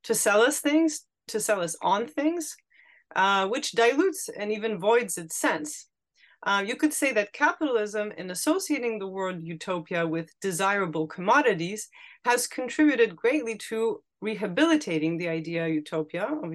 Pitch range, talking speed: 175-240 Hz, 150 wpm